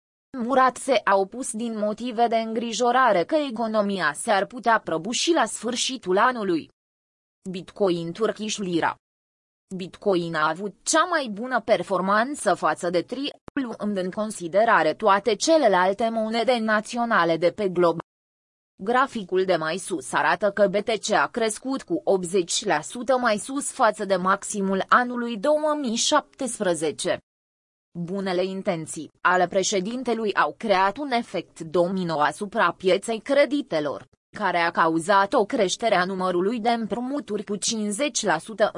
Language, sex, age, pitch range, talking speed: Romanian, female, 20-39, 180-235 Hz, 120 wpm